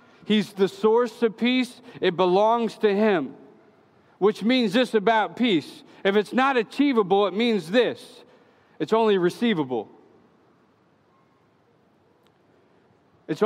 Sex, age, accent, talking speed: male, 40-59, American, 110 wpm